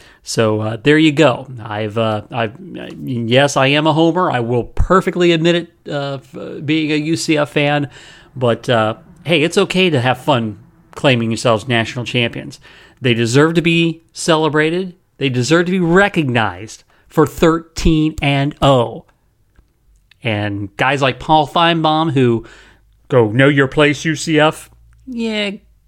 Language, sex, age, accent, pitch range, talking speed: English, male, 40-59, American, 120-165 Hz, 150 wpm